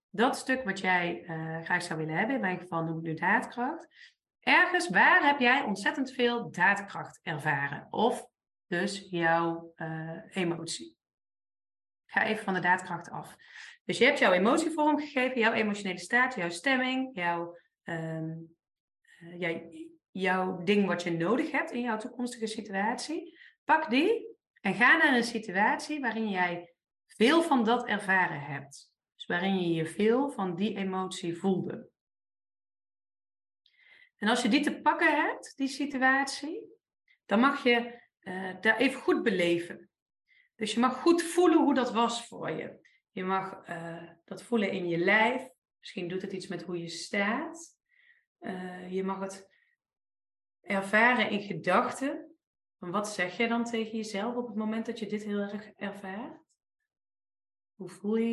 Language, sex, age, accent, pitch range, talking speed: Dutch, female, 30-49, Dutch, 180-270 Hz, 155 wpm